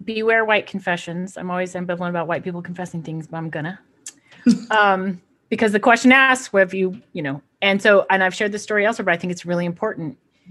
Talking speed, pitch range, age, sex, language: 210 wpm, 180-265 Hz, 30-49, female, English